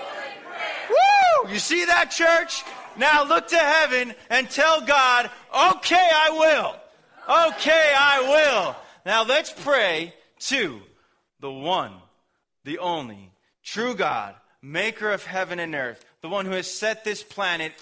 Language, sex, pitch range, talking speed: German, male, 165-215 Hz, 130 wpm